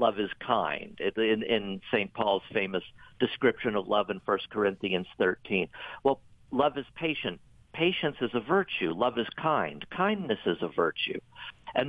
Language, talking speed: English, 155 wpm